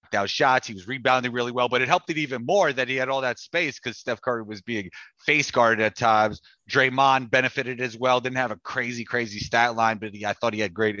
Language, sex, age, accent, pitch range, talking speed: English, male, 30-49, American, 105-130 Hz, 245 wpm